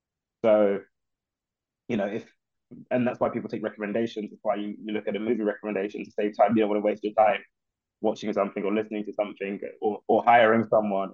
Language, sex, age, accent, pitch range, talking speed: English, male, 20-39, British, 105-120 Hz, 205 wpm